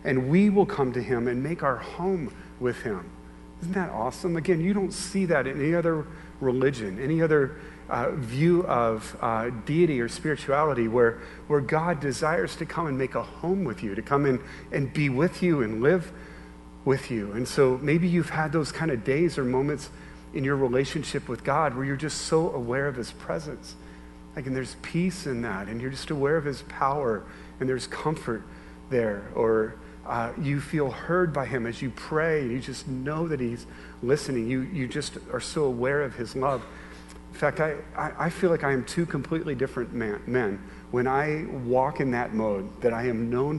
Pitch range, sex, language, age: 115-155 Hz, male, English, 40-59